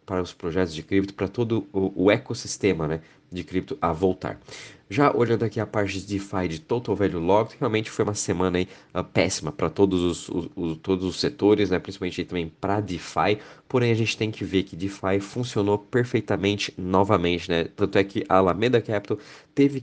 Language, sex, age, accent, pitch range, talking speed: Portuguese, male, 20-39, Brazilian, 95-110 Hz, 195 wpm